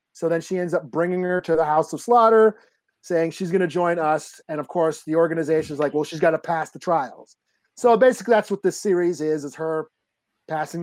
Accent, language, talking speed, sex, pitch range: American, English, 235 wpm, male, 155-200 Hz